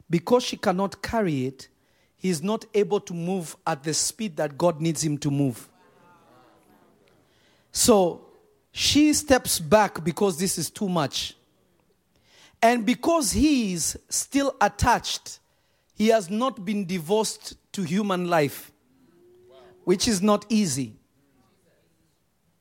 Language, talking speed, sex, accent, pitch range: English, 125 wpm, male, South African, 165-230 Hz